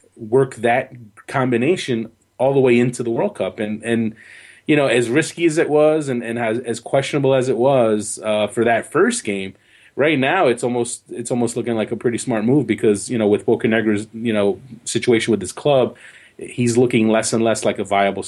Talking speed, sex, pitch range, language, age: 205 wpm, male, 110-125 Hz, English, 30-49